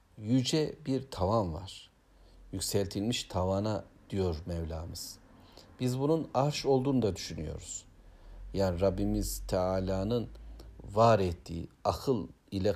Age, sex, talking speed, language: 60-79, male, 100 wpm, Turkish